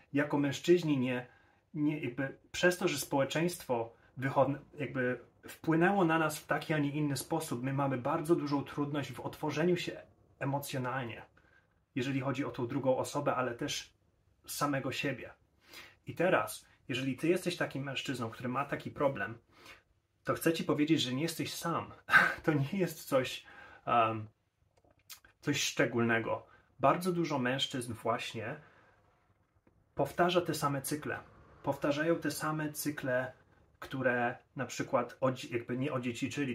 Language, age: Polish, 30-49